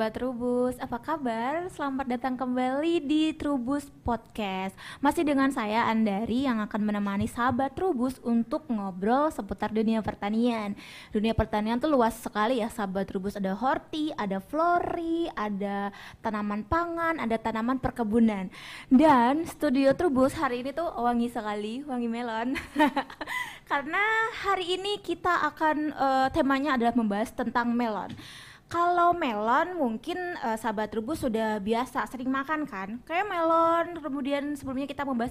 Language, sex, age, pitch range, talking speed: Indonesian, female, 20-39, 225-280 Hz, 135 wpm